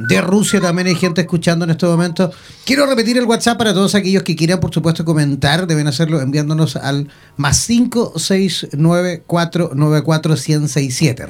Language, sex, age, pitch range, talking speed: Spanish, male, 30-49, 150-185 Hz, 145 wpm